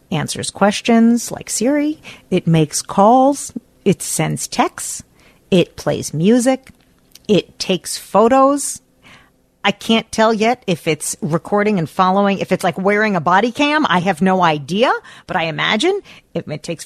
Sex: female